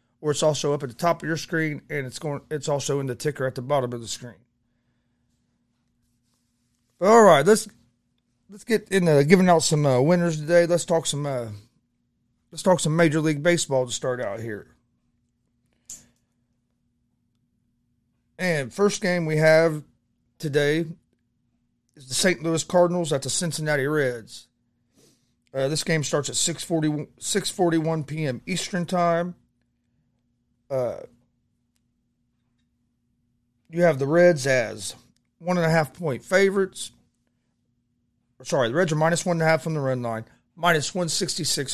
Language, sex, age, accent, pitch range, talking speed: English, male, 30-49, American, 120-165 Hz, 140 wpm